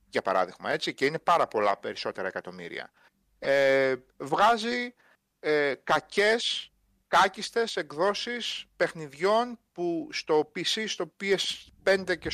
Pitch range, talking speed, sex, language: 150-230 Hz, 95 wpm, male, Greek